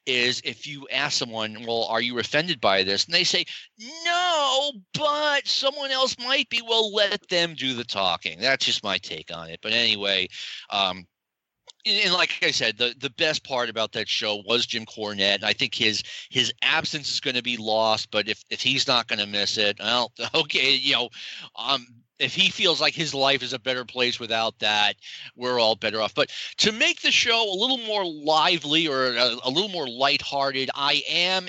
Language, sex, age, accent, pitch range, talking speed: English, male, 40-59, American, 125-205 Hz, 200 wpm